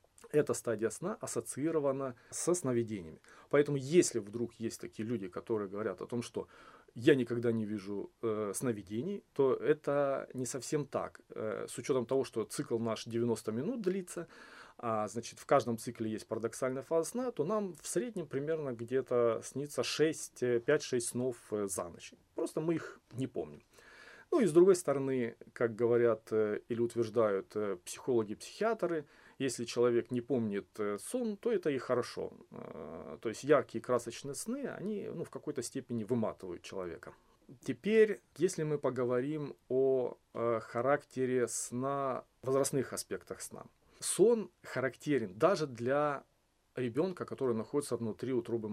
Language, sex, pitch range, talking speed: Russian, male, 115-150 Hz, 140 wpm